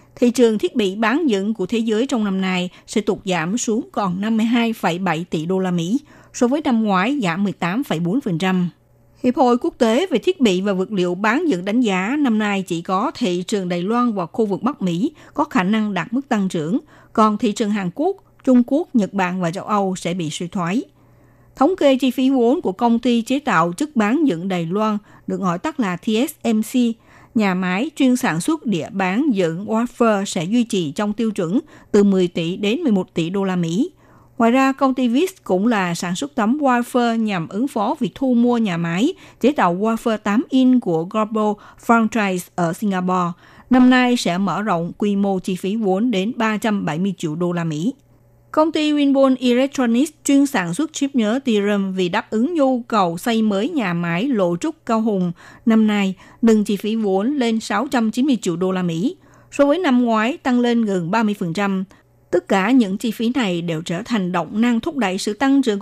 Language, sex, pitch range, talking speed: Vietnamese, female, 185-250 Hz, 205 wpm